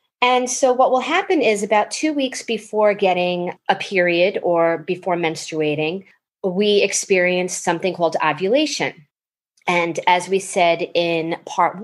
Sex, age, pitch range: female, 30-49, 165-205 Hz